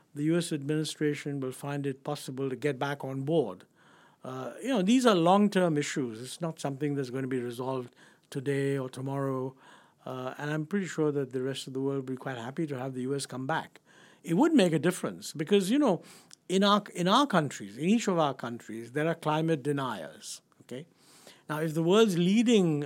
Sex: male